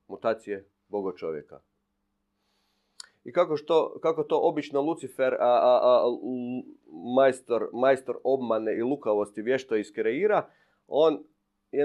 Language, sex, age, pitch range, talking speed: Croatian, male, 40-59, 105-155 Hz, 115 wpm